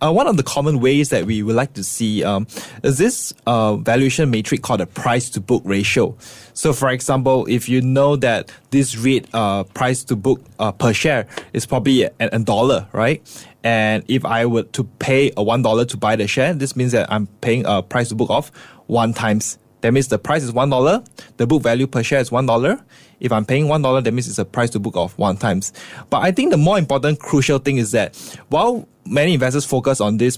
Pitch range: 115-140 Hz